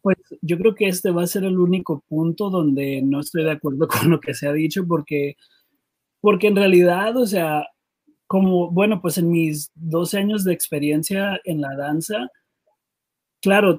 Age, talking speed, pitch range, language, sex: 30-49, 180 wpm, 150-195 Hz, Spanish, male